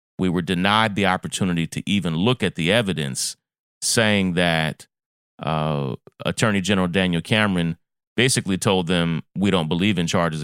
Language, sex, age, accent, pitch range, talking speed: English, male, 30-49, American, 80-105 Hz, 150 wpm